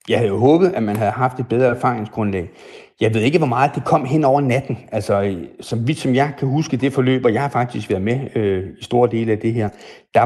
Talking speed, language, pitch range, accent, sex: 255 wpm, Danish, 100-125 Hz, native, male